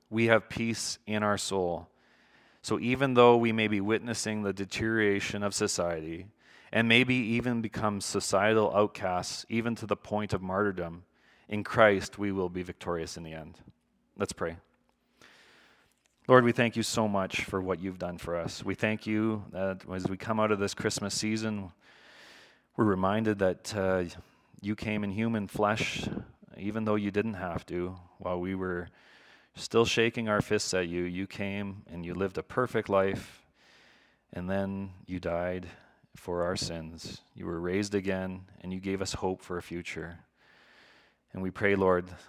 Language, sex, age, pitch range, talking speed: English, male, 30-49, 90-110 Hz, 170 wpm